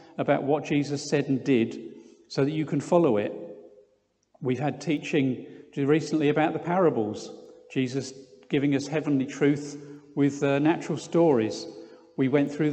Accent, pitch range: British, 140-170 Hz